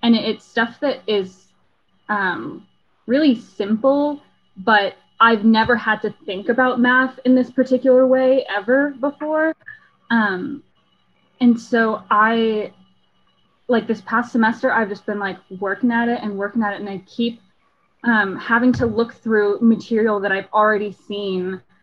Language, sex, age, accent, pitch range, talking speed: English, female, 10-29, American, 210-255 Hz, 150 wpm